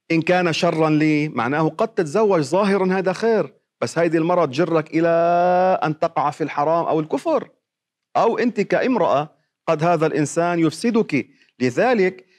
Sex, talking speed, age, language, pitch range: male, 140 wpm, 40-59, Arabic, 150-220 Hz